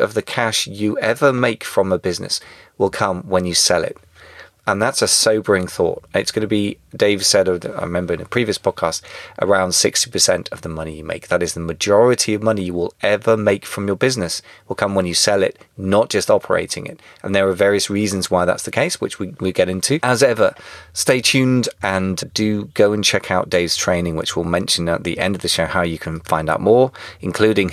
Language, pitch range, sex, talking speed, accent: English, 90-105 Hz, male, 225 wpm, British